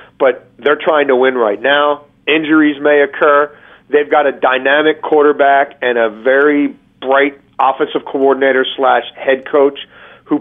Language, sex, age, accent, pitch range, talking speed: English, male, 40-59, American, 140-165 Hz, 150 wpm